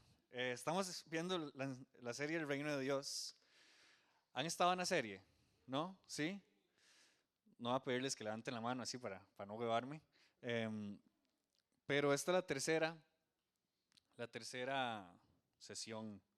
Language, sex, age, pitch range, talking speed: Spanish, male, 20-39, 110-145 Hz, 140 wpm